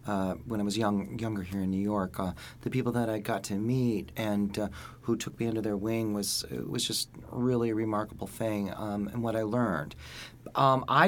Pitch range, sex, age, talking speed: 105-130 Hz, male, 30-49, 220 wpm